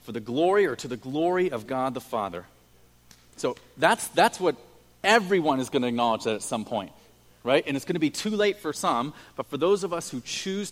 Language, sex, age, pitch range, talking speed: English, male, 40-59, 120-175 Hz, 230 wpm